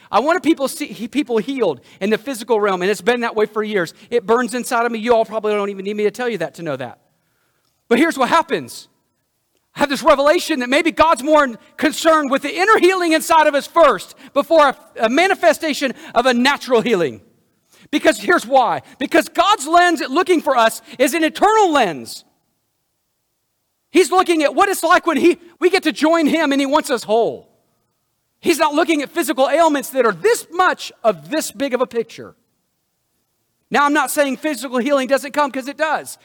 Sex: male